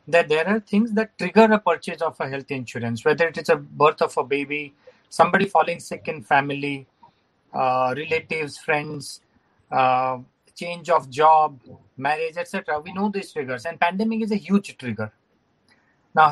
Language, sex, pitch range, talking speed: English, male, 155-210 Hz, 165 wpm